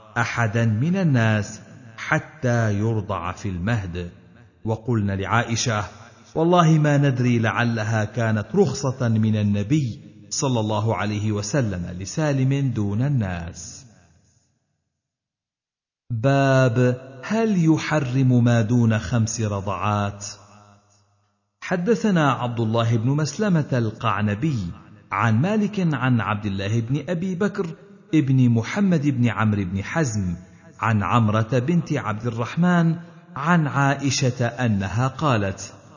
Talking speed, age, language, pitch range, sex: 100 wpm, 50-69, Arabic, 105-150 Hz, male